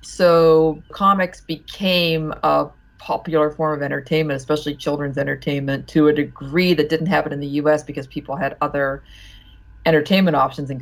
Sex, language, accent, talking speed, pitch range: female, English, American, 150 wpm, 135-165 Hz